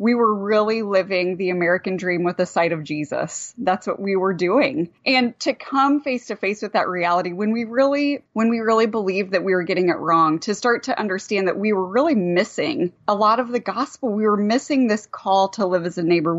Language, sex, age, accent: English, female, 30-49, American